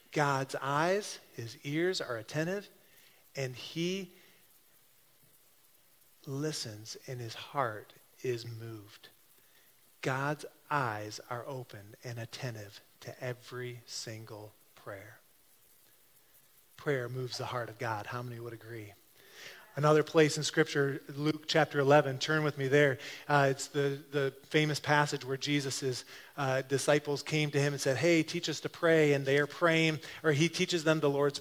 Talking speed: 145 wpm